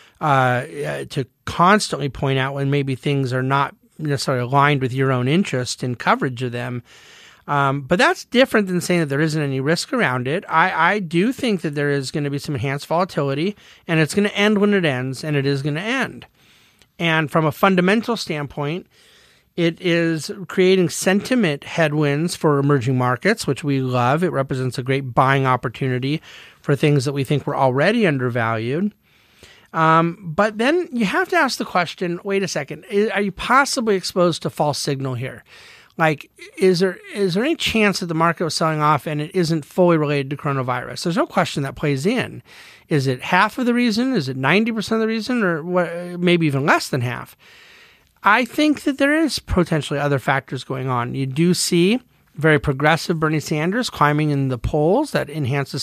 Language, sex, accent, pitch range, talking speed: English, male, American, 140-195 Hz, 190 wpm